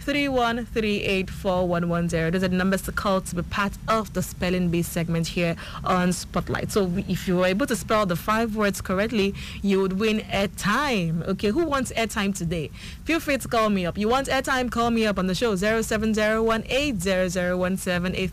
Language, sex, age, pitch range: English, female, 30-49, 180-235 Hz